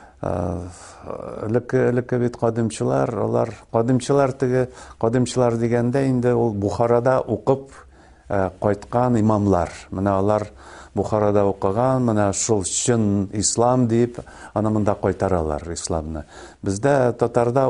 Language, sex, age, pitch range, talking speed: Russian, male, 50-69, 95-120 Hz, 90 wpm